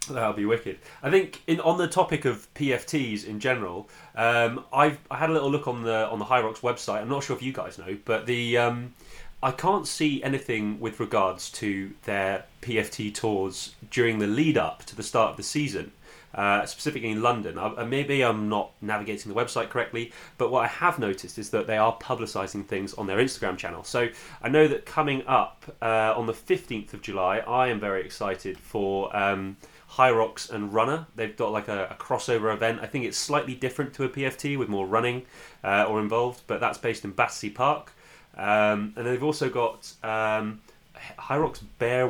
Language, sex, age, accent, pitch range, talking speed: English, male, 30-49, British, 105-130 Hz, 200 wpm